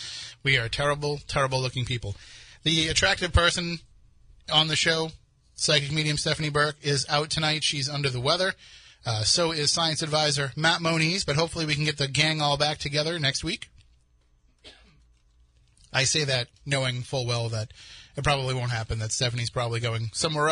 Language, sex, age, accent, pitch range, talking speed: English, male, 30-49, American, 120-155 Hz, 170 wpm